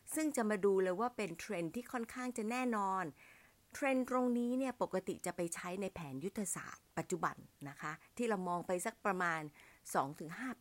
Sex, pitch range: female, 165-235 Hz